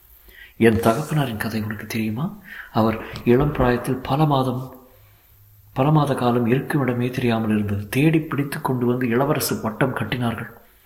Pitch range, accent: 120-145 Hz, native